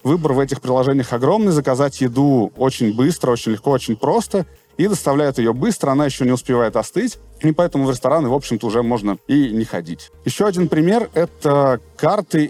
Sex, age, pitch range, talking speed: male, 30-49, 120-150 Hz, 180 wpm